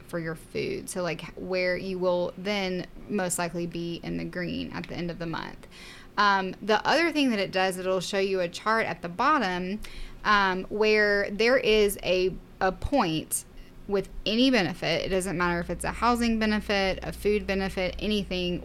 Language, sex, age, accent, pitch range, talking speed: English, female, 10-29, American, 180-205 Hz, 185 wpm